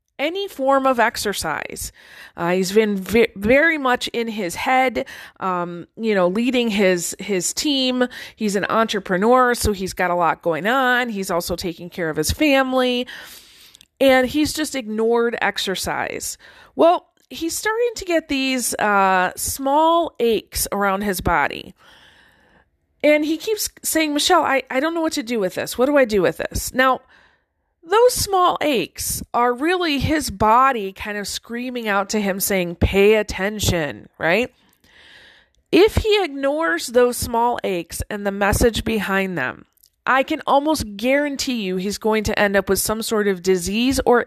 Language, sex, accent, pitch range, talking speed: English, female, American, 195-275 Hz, 160 wpm